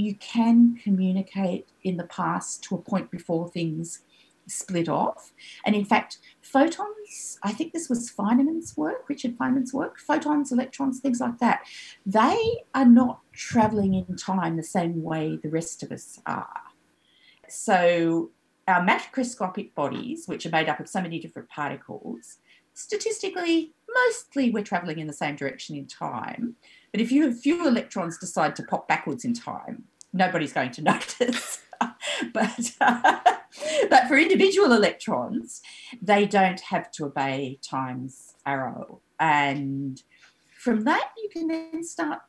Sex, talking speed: female, 145 wpm